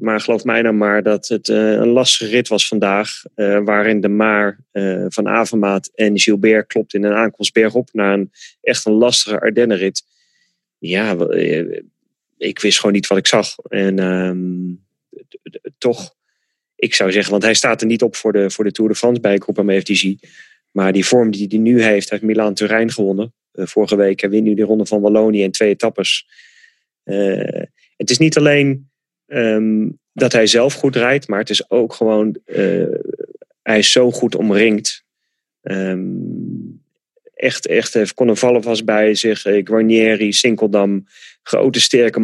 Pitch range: 105-120 Hz